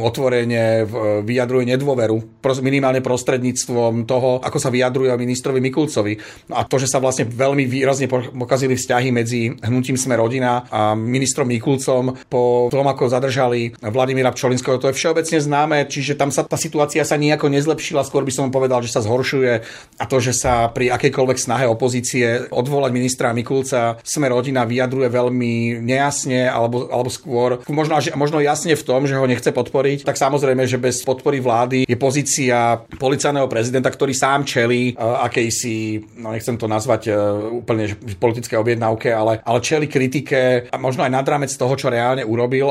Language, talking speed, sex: Slovak, 160 wpm, male